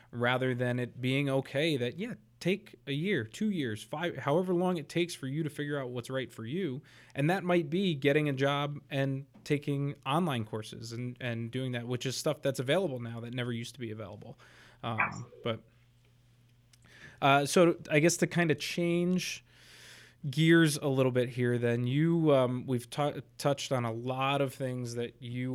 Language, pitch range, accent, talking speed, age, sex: English, 115-140 Hz, American, 190 wpm, 20-39, male